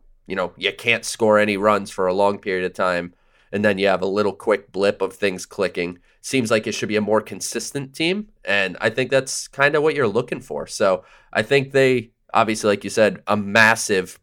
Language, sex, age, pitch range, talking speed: English, male, 30-49, 100-120 Hz, 225 wpm